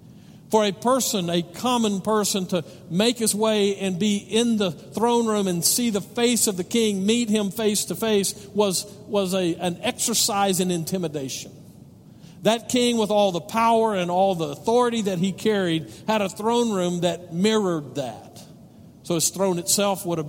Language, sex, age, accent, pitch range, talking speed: English, male, 50-69, American, 155-215 Hz, 180 wpm